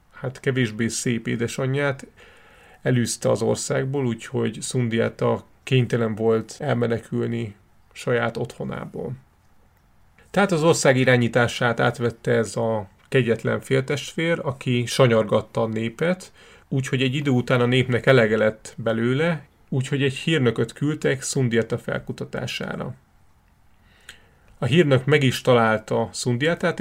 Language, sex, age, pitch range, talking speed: Hungarian, male, 30-49, 115-135 Hz, 105 wpm